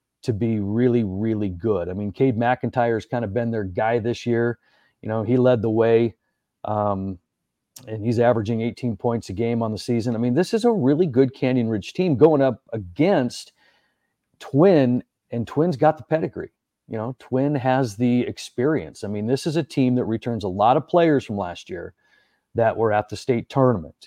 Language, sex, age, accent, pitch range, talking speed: English, male, 40-59, American, 110-135 Hz, 195 wpm